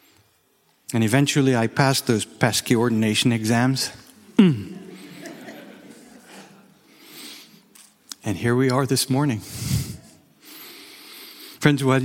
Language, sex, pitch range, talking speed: English, male, 120-150 Hz, 85 wpm